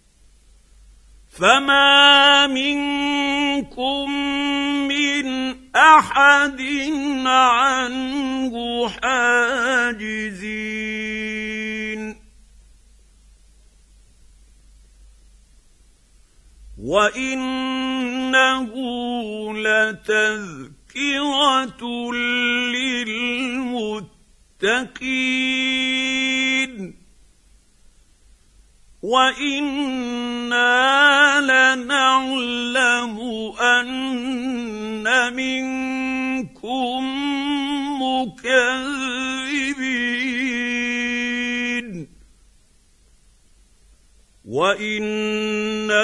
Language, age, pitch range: Arabic, 50-69, 215-260 Hz